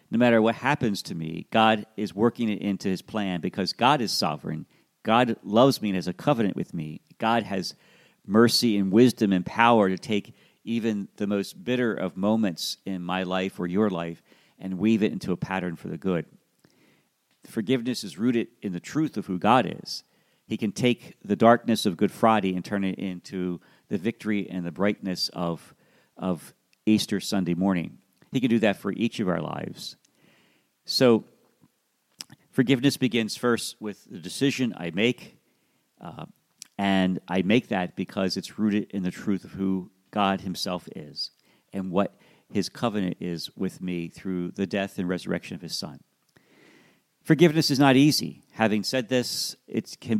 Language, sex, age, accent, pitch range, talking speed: English, male, 50-69, American, 95-115 Hz, 175 wpm